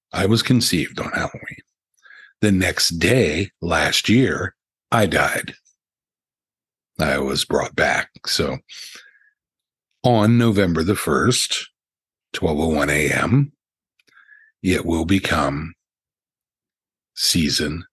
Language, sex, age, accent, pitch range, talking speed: English, male, 60-79, American, 80-120 Hz, 90 wpm